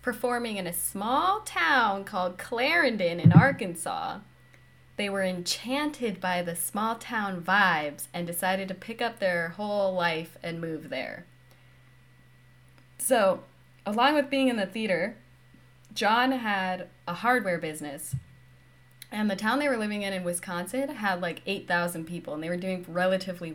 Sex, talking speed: female, 150 wpm